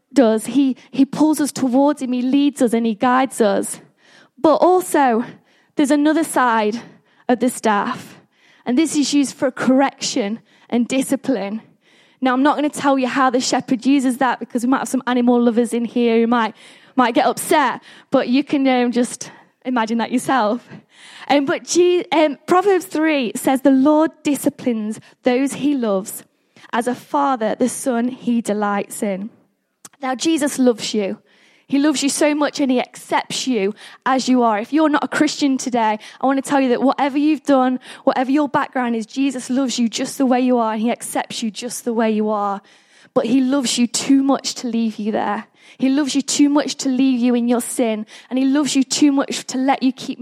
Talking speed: 200 wpm